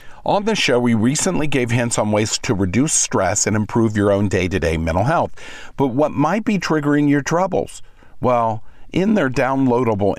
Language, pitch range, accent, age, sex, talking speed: English, 100-130 Hz, American, 50-69, male, 175 wpm